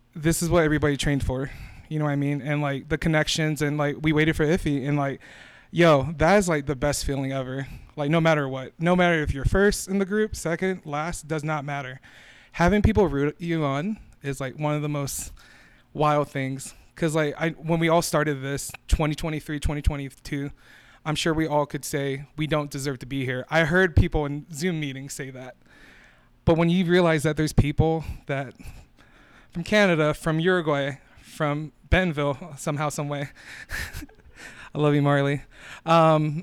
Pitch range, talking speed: 140-165 Hz, 185 wpm